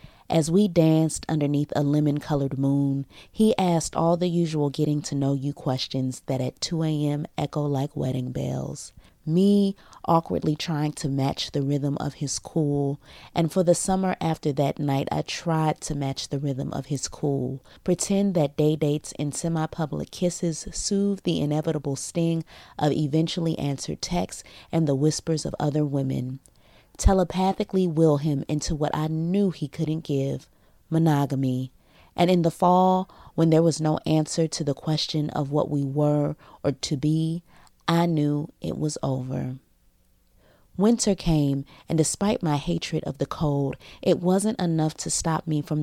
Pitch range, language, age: 140-165 Hz, English, 30-49